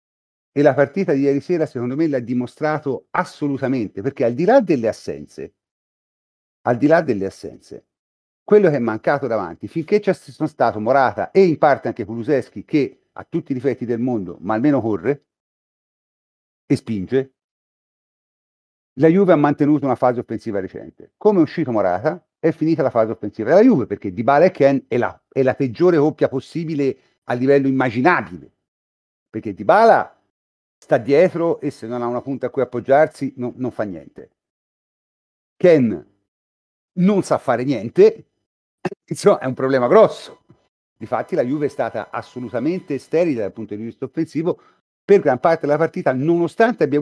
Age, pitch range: 50-69, 120-160 Hz